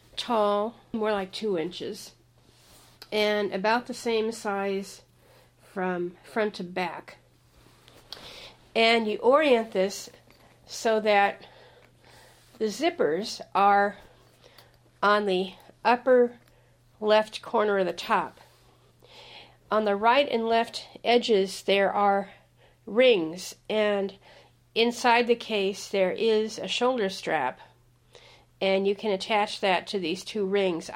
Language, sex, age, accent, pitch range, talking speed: English, female, 50-69, American, 190-220 Hz, 110 wpm